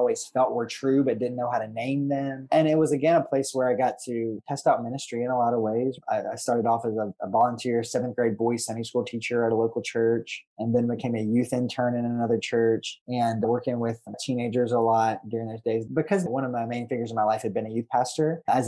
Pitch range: 115-130 Hz